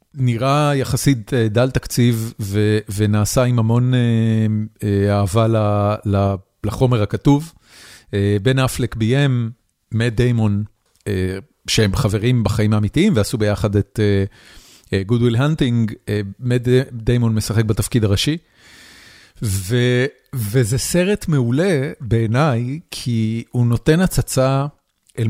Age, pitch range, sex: 40-59, 110-130 Hz, male